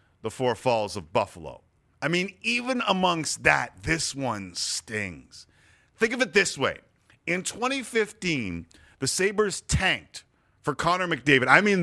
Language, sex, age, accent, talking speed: English, male, 40-59, American, 140 wpm